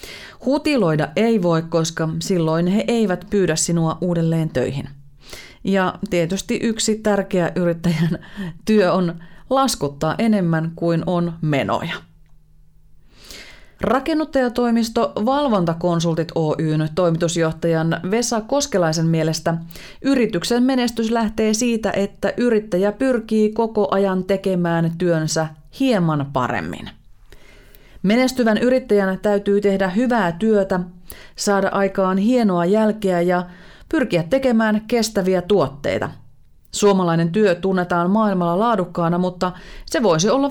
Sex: female